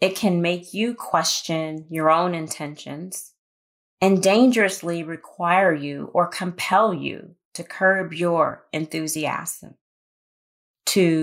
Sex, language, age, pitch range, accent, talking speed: female, English, 30-49, 160-190 Hz, American, 105 wpm